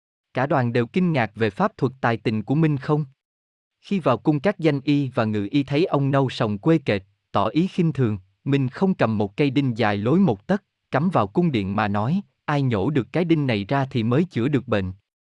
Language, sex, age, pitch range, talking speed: Vietnamese, male, 20-39, 115-160 Hz, 235 wpm